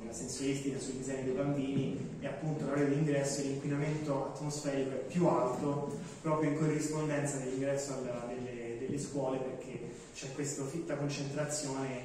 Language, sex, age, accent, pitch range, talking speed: Italian, male, 20-39, native, 125-150 Hz, 145 wpm